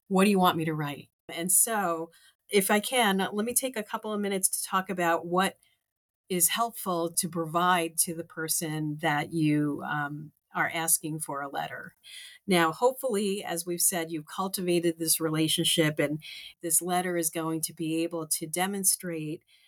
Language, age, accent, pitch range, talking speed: English, 40-59, American, 160-185 Hz, 175 wpm